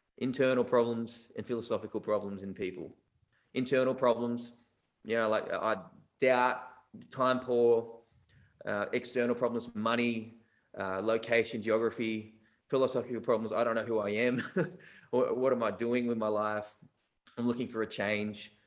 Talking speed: 145 wpm